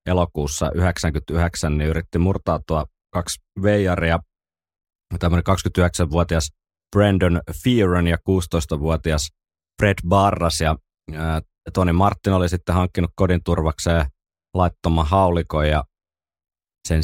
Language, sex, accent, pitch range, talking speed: Finnish, male, native, 80-90 Hz, 80 wpm